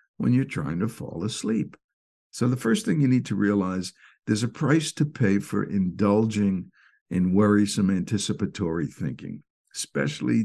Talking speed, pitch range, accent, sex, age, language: 150 wpm, 95-125 Hz, American, male, 60-79, English